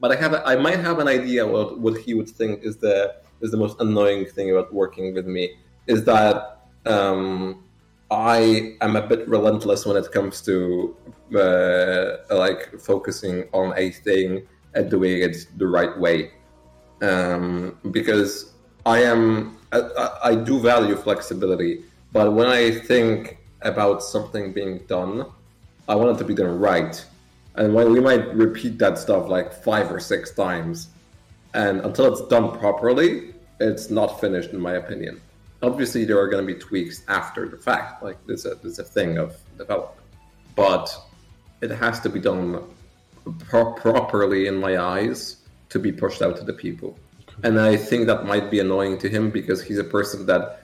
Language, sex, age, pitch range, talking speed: English, male, 30-49, 95-110 Hz, 170 wpm